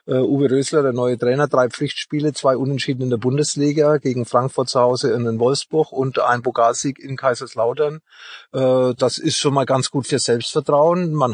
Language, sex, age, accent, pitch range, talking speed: German, male, 30-49, German, 120-145 Hz, 180 wpm